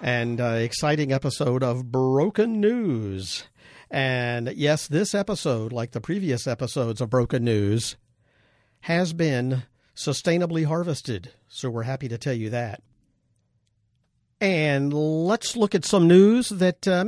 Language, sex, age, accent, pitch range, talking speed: English, male, 50-69, American, 125-170 Hz, 130 wpm